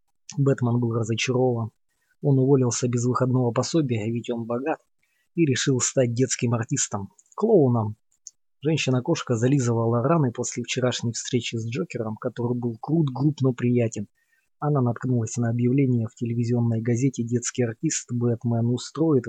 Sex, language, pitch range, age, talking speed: male, Russian, 115-130 Hz, 20-39, 130 wpm